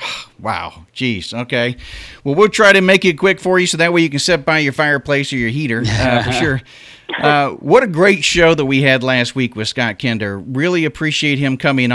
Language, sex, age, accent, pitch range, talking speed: English, male, 40-59, American, 115-145 Hz, 220 wpm